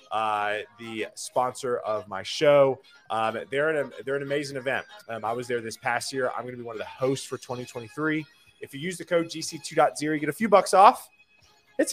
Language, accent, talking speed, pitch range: English, American, 215 wpm, 110-145 Hz